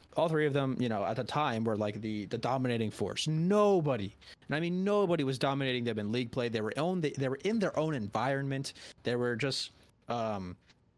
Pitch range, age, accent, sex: 120-170 Hz, 30-49, American, male